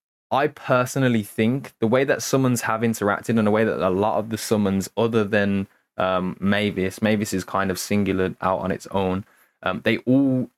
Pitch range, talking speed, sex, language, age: 95-115 Hz, 195 wpm, male, English, 20-39